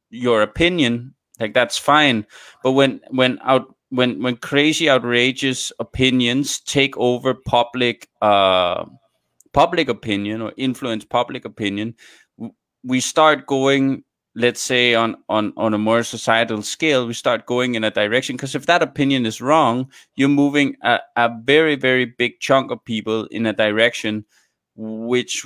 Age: 20-39